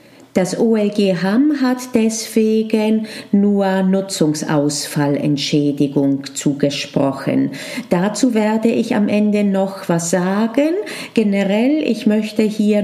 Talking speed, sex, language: 95 wpm, female, German